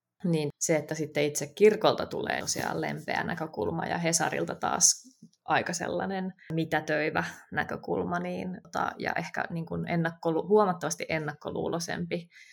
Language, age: Finnish, 20-39